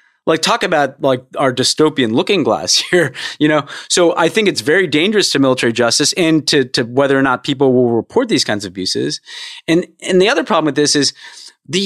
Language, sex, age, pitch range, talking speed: English, male, 30-49, 135-170 Hz, 215 wpm